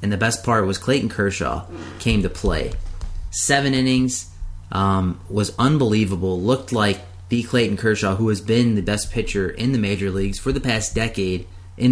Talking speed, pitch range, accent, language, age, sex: 175 wpm, 95-125 Hz, American, English, 30-49, male